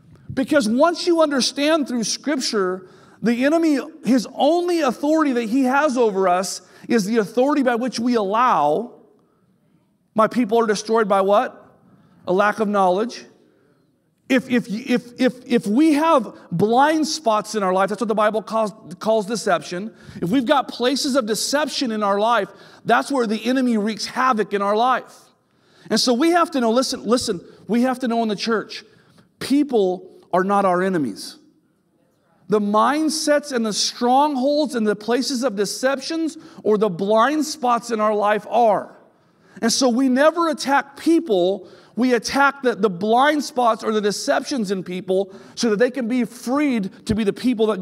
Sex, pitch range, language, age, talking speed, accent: male, 205-270 Hz, English, 40-59, 170 wpm, American